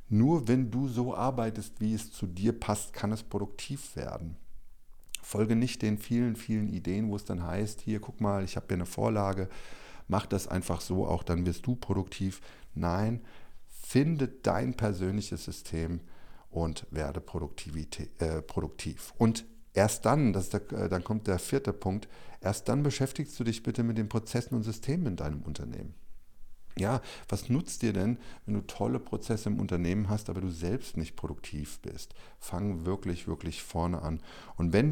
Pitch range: 85-115 Hz